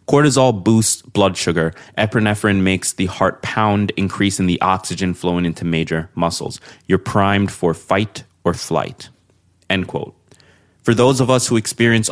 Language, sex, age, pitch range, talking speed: English, male, 20-39, 90-115 Hz, 150 wpm